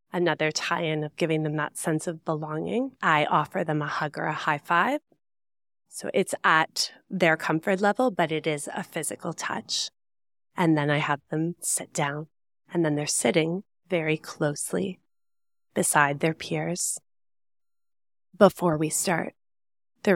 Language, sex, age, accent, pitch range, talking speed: English, female, 20-39, American, 155-185 Hz, 145 wpm